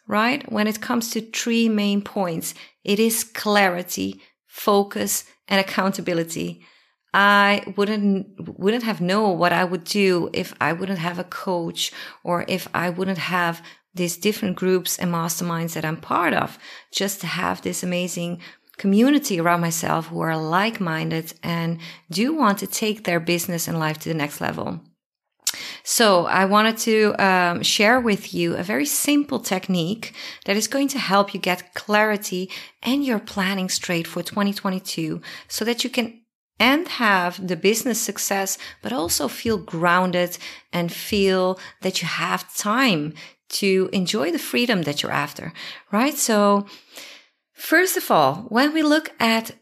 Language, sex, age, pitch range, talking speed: English, female, 30-49, 175-220 Hz, 155 wpm